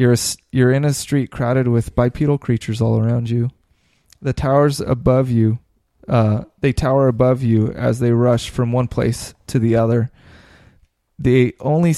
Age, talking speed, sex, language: 20-39, 165 wpm, male, English